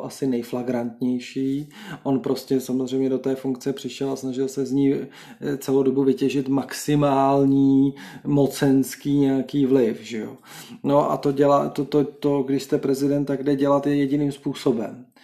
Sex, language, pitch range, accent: male, Czech, 130-145 Hz, native